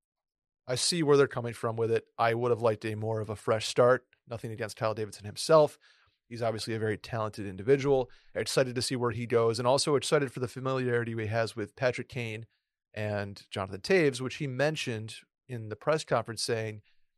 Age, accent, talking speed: 30-49, American, 205 wpm